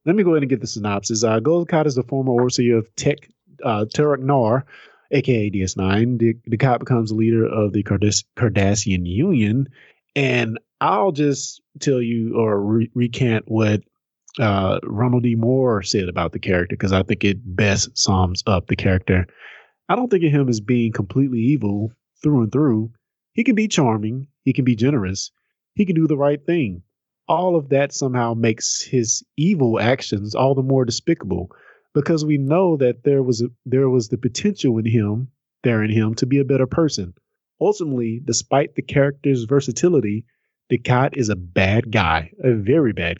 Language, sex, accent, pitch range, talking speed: English, male, American, 110-140 Hz, 180 wpm